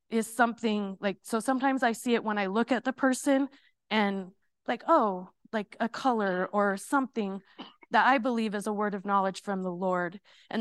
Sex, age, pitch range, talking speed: female, 30-49, 210-260 Hz, 190 wpm